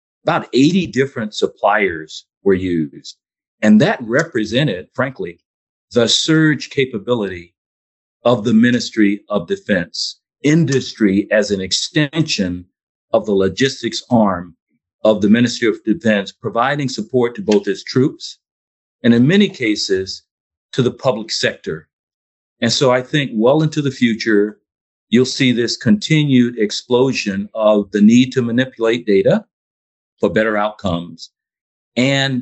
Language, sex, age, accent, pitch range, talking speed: English, male, 50-69, American, 100-130 Hz, 125 wpm